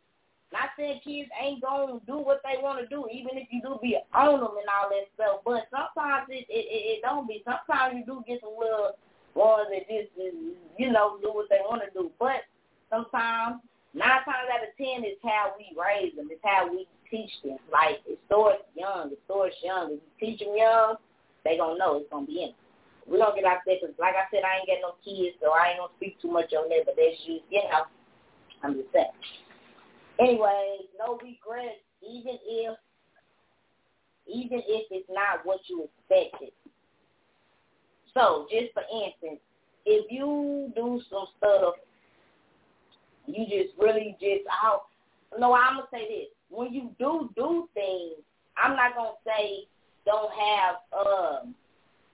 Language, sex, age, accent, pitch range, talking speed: English, female, 20-39, American, 195-265 Hz, 190 wpm